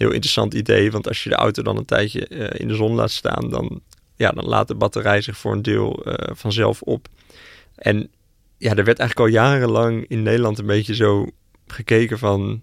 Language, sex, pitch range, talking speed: Dutch, male, 105-120 Hz, 210 wpm